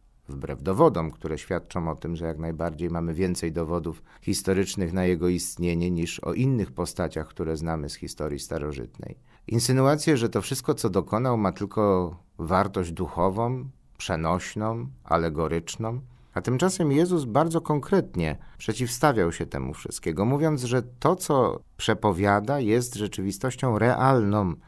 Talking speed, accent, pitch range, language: 130 wpm, native, 85-130 Hz, Polish